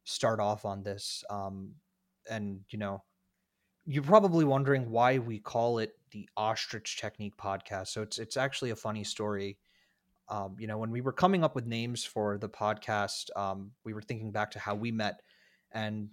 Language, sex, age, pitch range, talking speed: English, male, 20-39, 105-130 Hz, 180 wpm